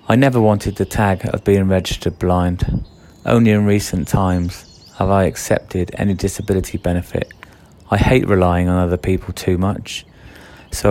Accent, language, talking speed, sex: British, English, 155 wpm, male